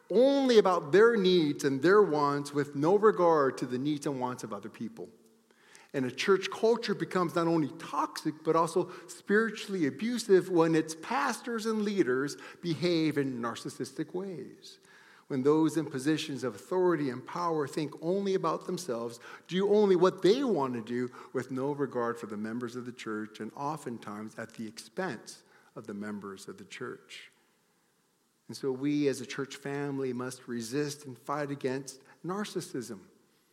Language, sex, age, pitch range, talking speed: English, male, 50-69, 125-185 Hz, 165 wpm